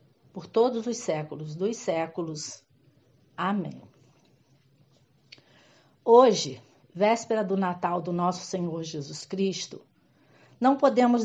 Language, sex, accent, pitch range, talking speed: Portuguese, female, Brazilian, 180-230 Hz, 95 wpm